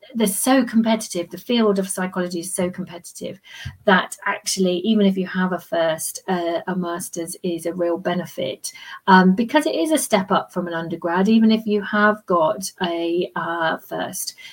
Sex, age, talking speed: female, 40-59, 180 wpm